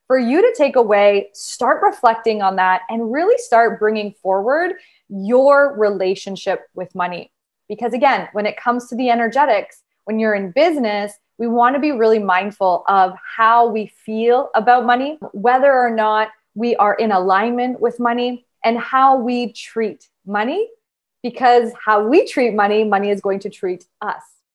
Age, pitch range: 20-39, 210-270 Hz